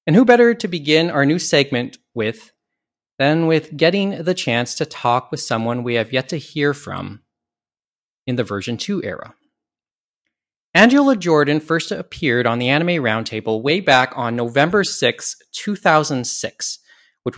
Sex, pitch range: male, 120-175 Hz